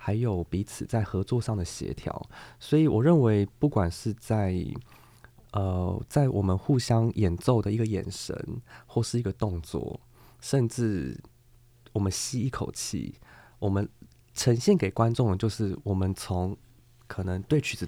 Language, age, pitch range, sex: Chinese, 20-39, 95-120 Hz, male